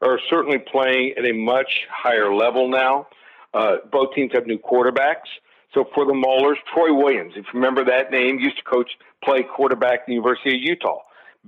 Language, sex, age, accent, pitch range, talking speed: English, male, 60-79, American, 125-140 Hz, 190 wpm